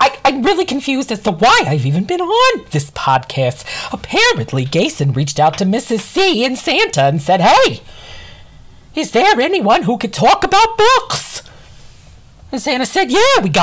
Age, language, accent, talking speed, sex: 40-59, English, American, 160 wpm, male